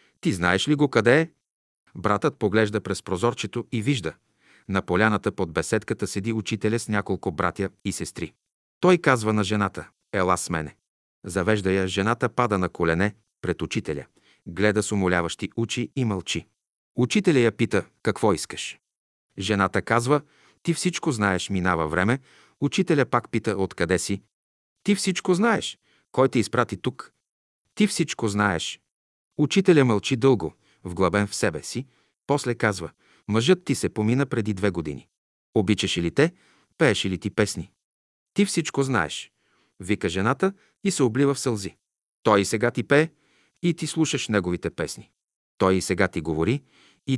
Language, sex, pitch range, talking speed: Bulgarian, male, 95-135 Hz, 155 wpm